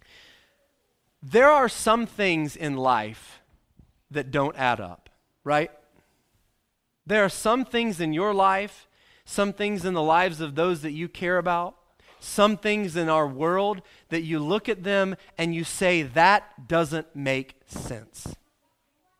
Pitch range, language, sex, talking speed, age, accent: 145-200 Hz, English, male, 145 wpm, 30-49, American